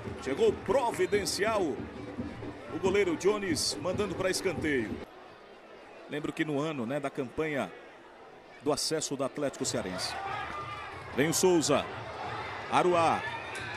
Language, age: Portuguese, 50-69